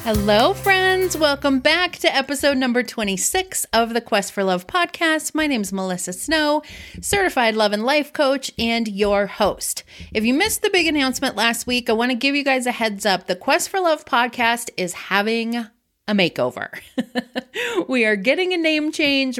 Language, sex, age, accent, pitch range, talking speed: English, female, 30-49, American, 190-275 Hz, 185 wpm